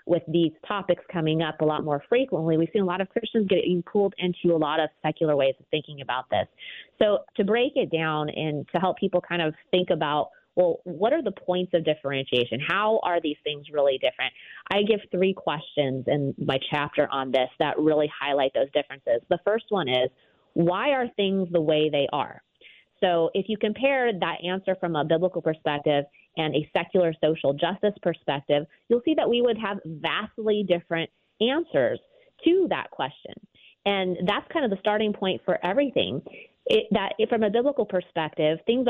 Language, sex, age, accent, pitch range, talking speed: English, female, 30-49, American, 155-210 Hz, 185 wpm